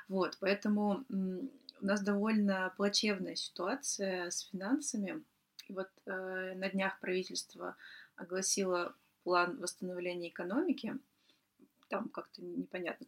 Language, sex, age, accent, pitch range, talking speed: Russian, female, 20-39, native, 185-225 Hz, 100 wpm